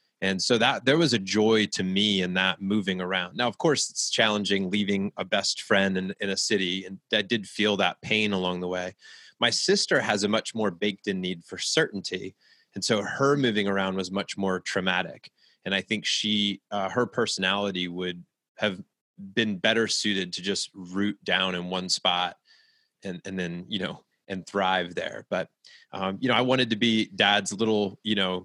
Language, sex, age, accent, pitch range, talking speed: English, male, 20-39, American, 95-110 Hz, 200 wpm